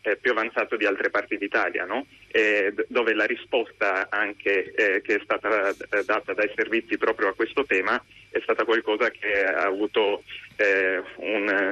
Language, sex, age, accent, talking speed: Italian, male, 20-39, native, 155 wpm